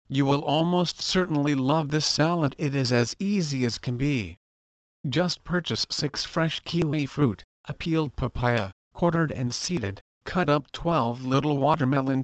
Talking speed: 150 wpm